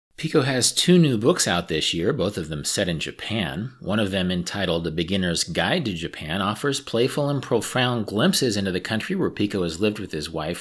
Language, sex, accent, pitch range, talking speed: English, male, American, 95-140 Hz, 215 wpm